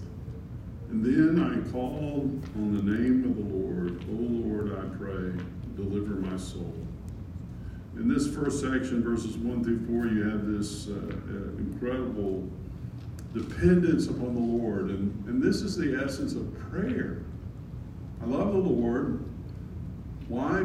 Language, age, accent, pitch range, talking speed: English, 50-69, American, 105-175 Hz, 140 wpm